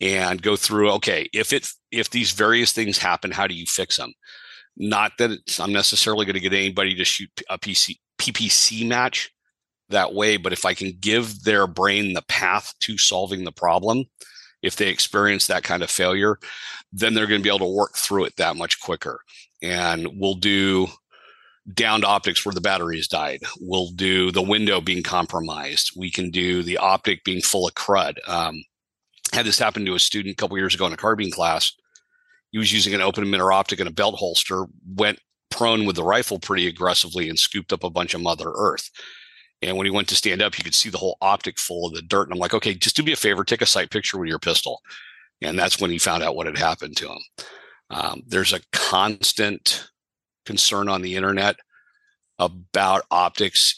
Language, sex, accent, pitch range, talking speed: English, male, American, 90-105 Hz, 205 wpm